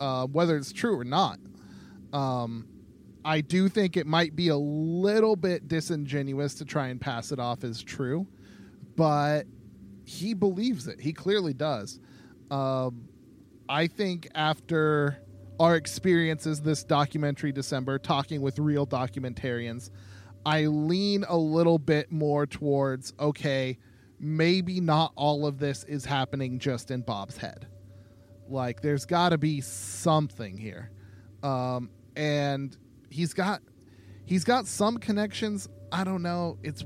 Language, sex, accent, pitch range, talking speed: English, male, American, 125-165 Hz, 135 wpm